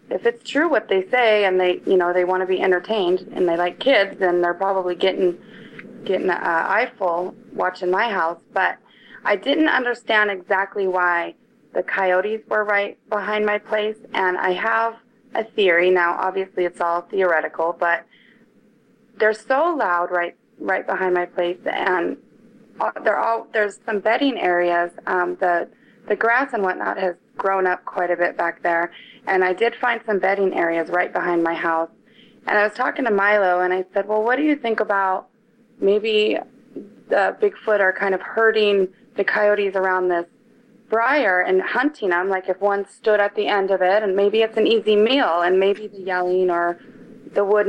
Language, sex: English, female